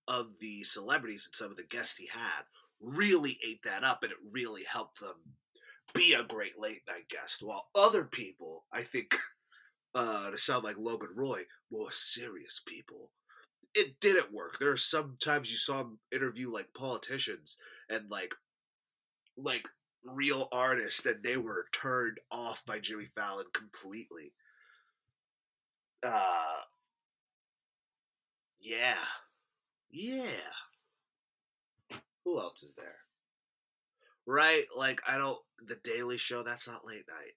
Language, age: English, 30-49